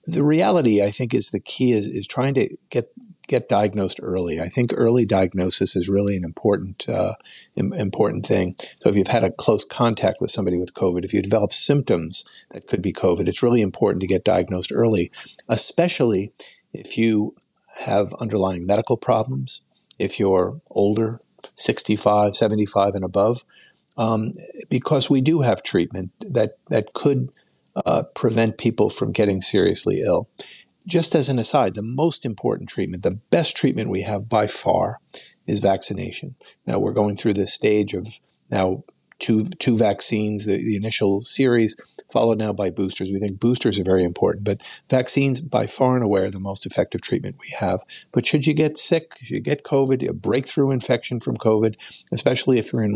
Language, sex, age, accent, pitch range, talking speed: English, male, 50-69, American, 100-125 Hz, 175 wpm